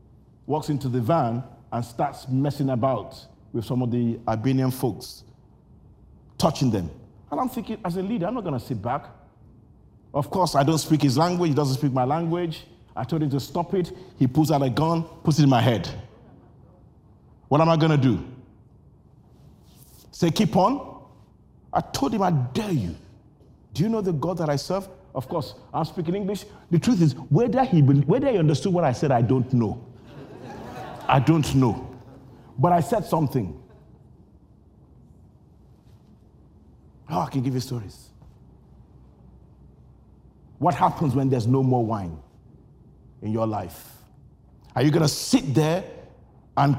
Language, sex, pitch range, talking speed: English, male, 130-170 Hz, 165 wpm